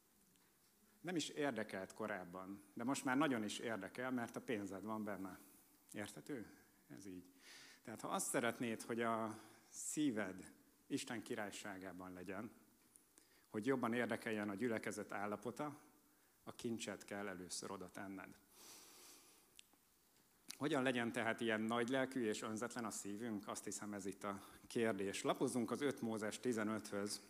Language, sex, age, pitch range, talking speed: Hungarian, male, 60-79, 100-120 Hz, 130 wpm